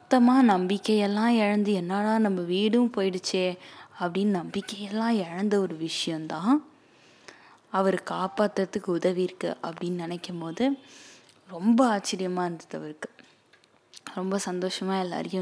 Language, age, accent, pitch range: Tamil, 20-39, native, 175-210 Hz